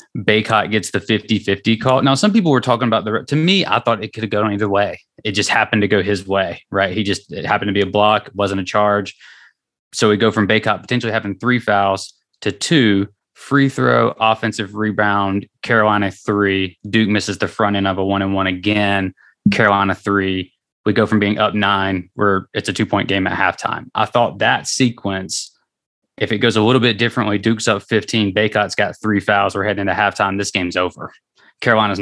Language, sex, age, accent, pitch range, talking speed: English, male, 20-39, American, 100-115 Hz, 205 wpm